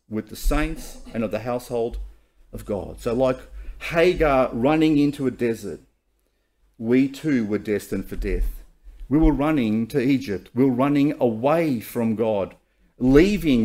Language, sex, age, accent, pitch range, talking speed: English, male, 40-59, Australian, 110-165 Hz, 150 wpm